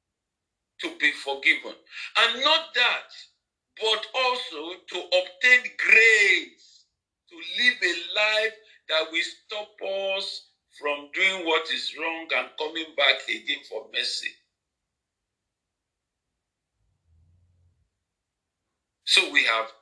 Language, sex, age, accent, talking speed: English, male, 50-69, Nigerian, 100 wpm